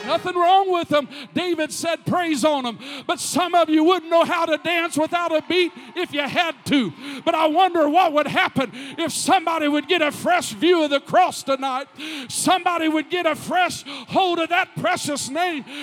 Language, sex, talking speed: English, male, 195 wpm